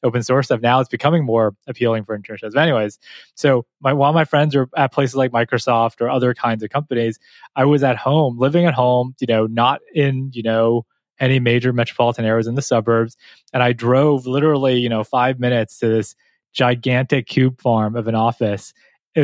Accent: American